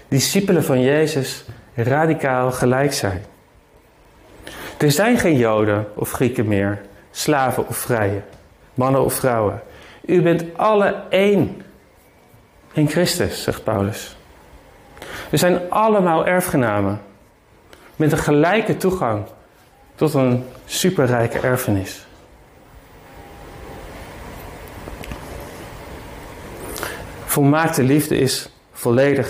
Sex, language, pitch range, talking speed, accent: male, Dutch, 110-155 Hz, 90 wpm, Dutch